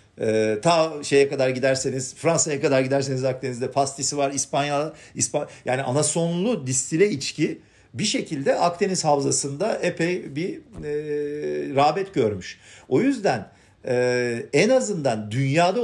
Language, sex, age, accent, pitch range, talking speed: Turkish, male, 50-69, native, 120-170 Hz, 115 wpm